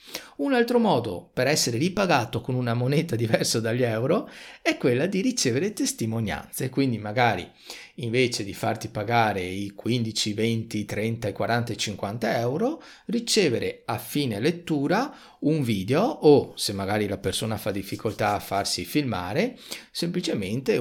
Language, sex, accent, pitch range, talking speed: Italian, male, native, 110-165 Hz, 135 wpm